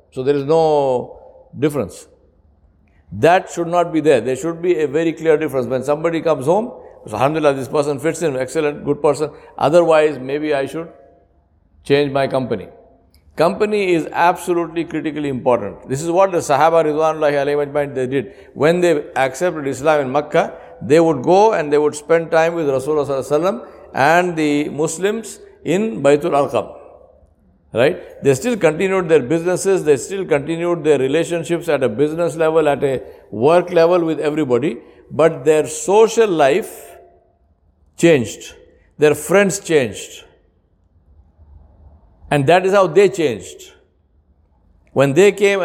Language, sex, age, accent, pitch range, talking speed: English, male, 60-79, Indian, 140-175 Hz, 145 wpm